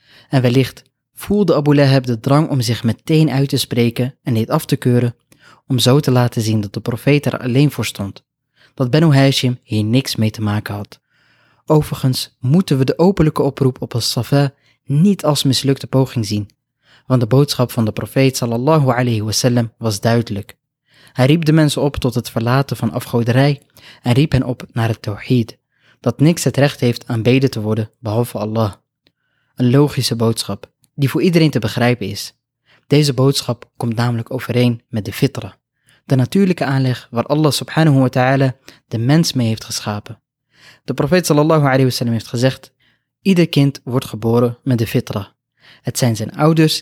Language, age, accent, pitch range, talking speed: Dutch, 20-39, Dutch, 115-140 Hz, 175 wpm